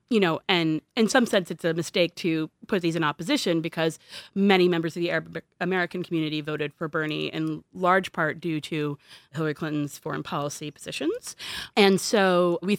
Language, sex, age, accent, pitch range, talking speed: English, female, 30-49, American, 155-185 Hz, 180 wpm